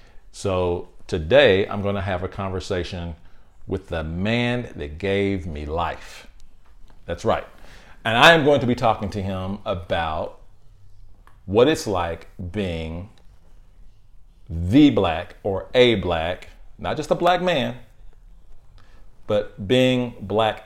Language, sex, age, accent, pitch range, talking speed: English, male, 40-59, American, 90-105 Hz, 130 wpm